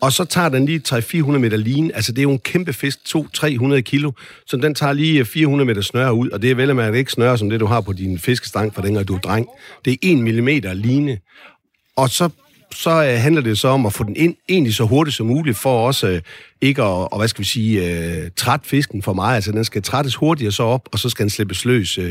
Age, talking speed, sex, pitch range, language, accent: 50-69, 240 wpm, male, 105-140 Hz, Danish, native